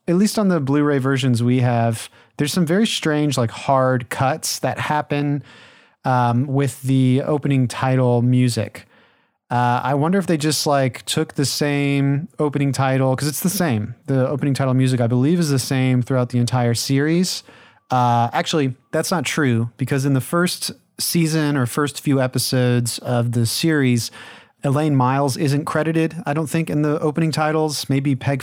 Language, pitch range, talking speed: English, 125-150 Hz, 175 wpm